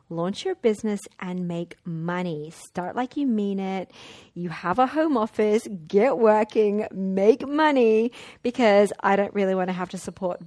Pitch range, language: 180-220 Hz, English